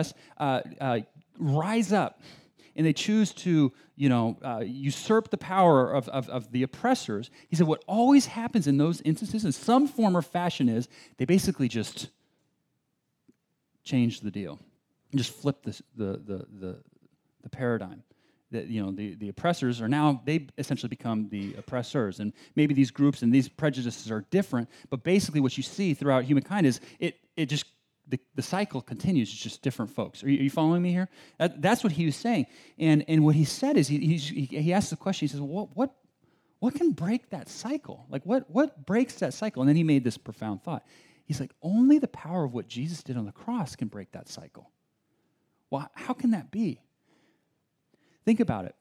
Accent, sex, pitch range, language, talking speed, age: American, male, 130-190 Hz, English, 195 wpm, 30-49